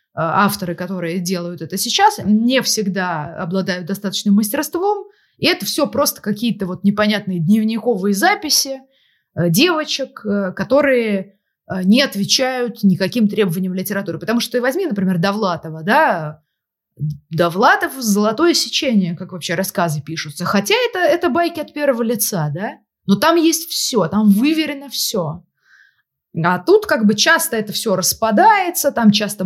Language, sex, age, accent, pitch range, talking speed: Russian, female, 20-39, native, 185-250 Hz, 130 wpm